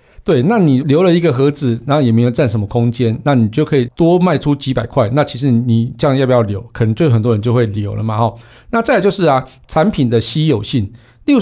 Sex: male